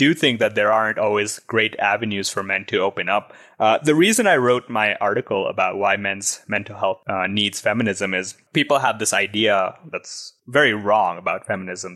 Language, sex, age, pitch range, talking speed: English, male, 20-39, 100-120 Hz, 190 wpm